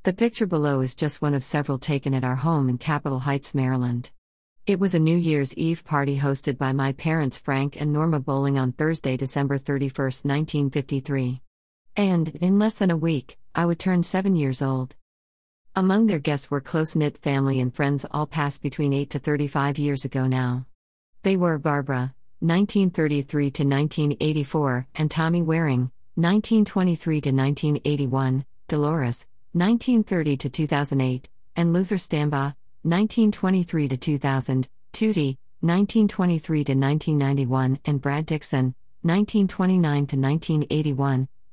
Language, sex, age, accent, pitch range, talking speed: English, female, 50-69, American, 135-165 Hz, 130 wpm